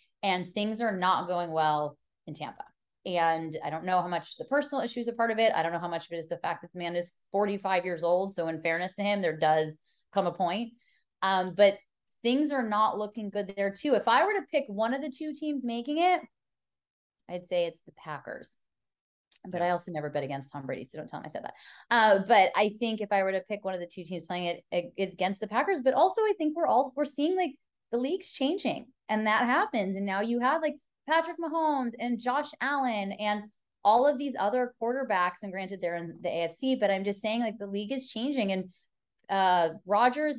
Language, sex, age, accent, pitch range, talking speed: English, female, 20-39, American, 185-260 Hz, 235 wpm